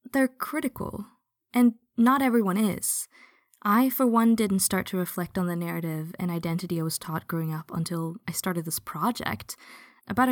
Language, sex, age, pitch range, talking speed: English, female, 20-39, 180-245 Hz, 170 wpm